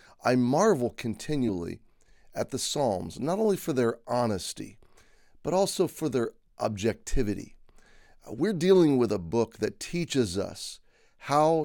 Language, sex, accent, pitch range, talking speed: English, male, American, 115-150 Hz, 130 wpm